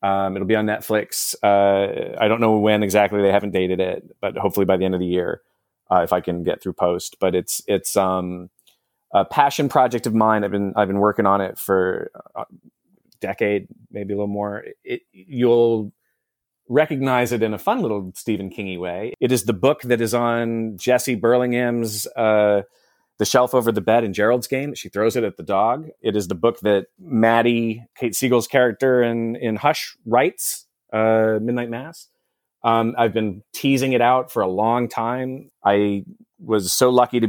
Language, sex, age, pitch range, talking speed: English, male, 30-49, 100-125 Hz, 190 wpm